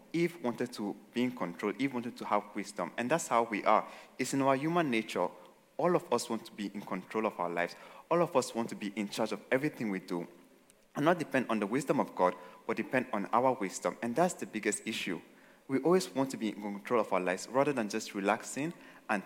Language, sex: English, male